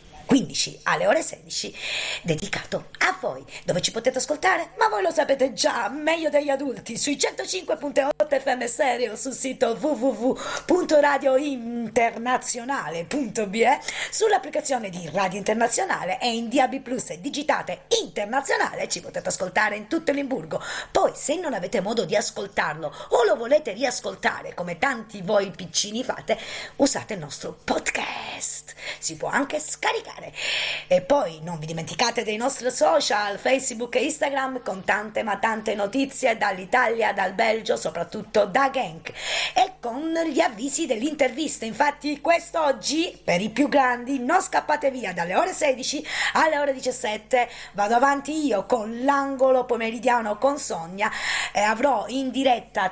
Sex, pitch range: female, 230-290 Hz